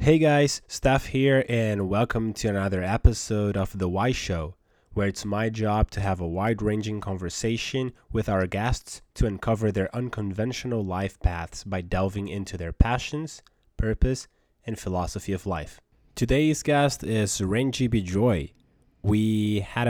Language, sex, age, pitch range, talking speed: English, male, 20-39, 90-110 Hz, 145 wpm